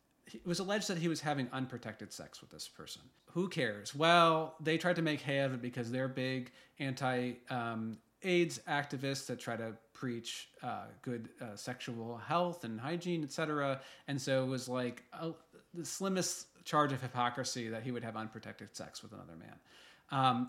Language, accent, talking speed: English, American, 180 wpm